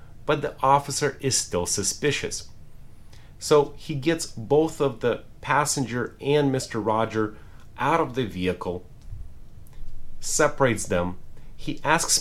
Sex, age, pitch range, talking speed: male, 30-49, 100-135 Hz, 120 wpm